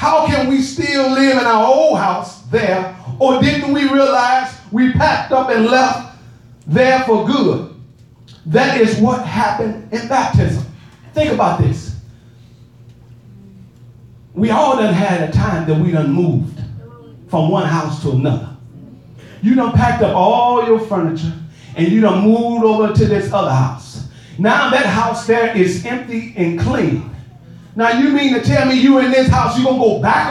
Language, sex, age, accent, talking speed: English, male, 40-59, American, 165 wpm